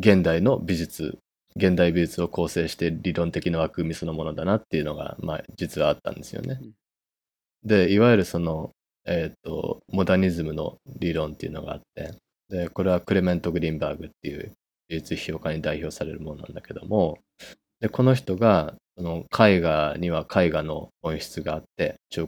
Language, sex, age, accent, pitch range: Japanese, male, 20-39, native, 80-95 Hz